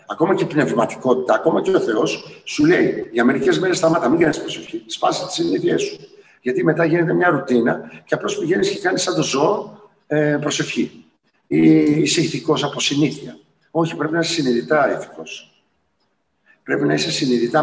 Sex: male